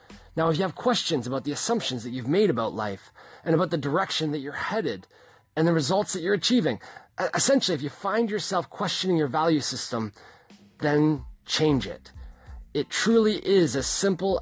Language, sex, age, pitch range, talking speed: English, male, 30-49, 130-180 Hz, 180 wpm